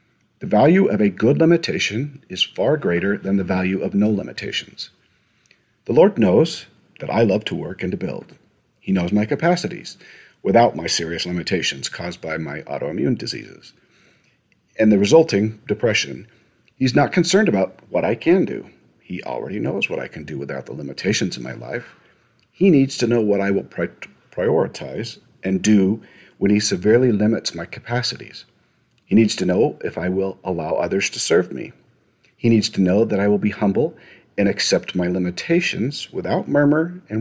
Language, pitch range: English, 100-125 Hz